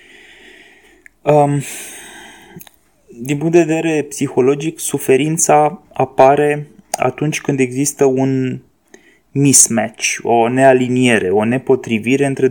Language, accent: Romanian, native